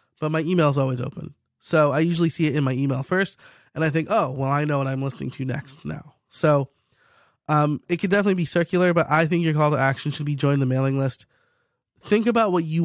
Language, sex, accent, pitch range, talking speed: English, male, American, 135-175 Hz, 245 wpm